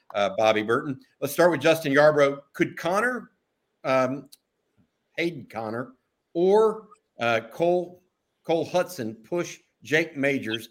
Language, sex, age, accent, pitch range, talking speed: English, male, 50-69, American, 125-150 Hz, 120 wpm